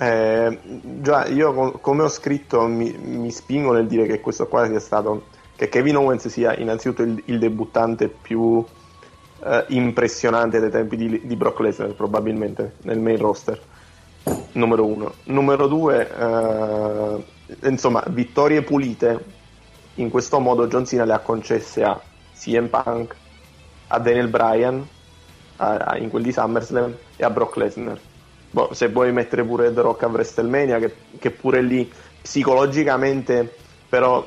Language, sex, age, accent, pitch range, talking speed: Italian, male, 30-49, native, 115-125 Hz, 145 wpm